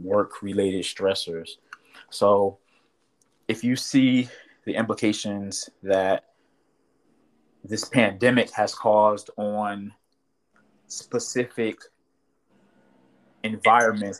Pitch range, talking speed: 95-115 Hz, 70 wpm